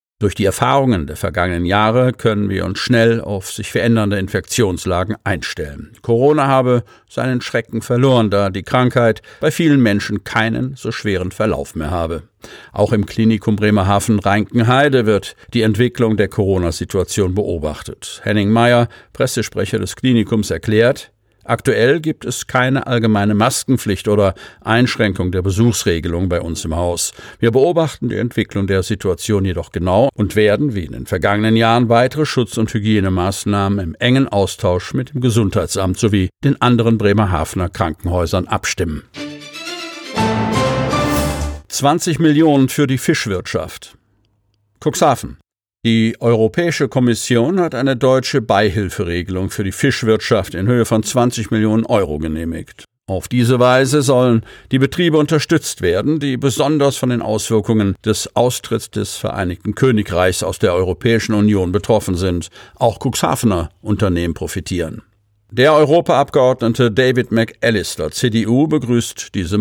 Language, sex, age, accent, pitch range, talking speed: German, male, 50-69, German, 100-125 Hz, 130 wpm